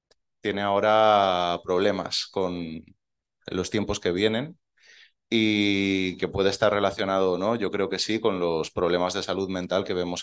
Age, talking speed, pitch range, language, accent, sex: 20-39, 155 wpm, 95-110 Hz, Spanish, Spanish, male